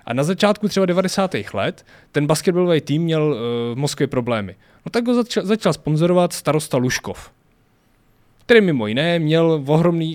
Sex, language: male, Czech